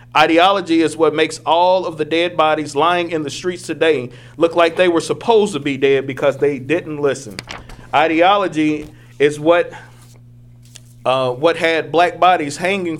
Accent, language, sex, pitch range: American, English, male, 135-175 Hz